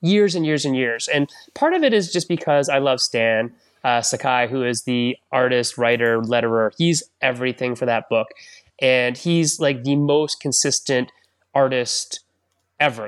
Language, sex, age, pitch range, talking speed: English, male, 20-39, 130-195 Hz, 165 wpm